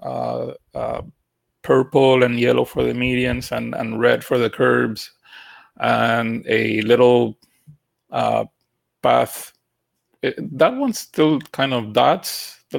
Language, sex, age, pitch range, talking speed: English, male, 30-49, 120-135 Hz, 125 wpm